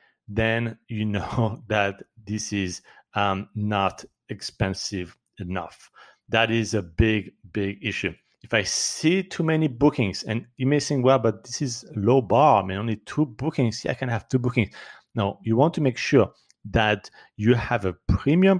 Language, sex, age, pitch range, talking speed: English, male, 40-59, 105-135 Hz, 175 wpm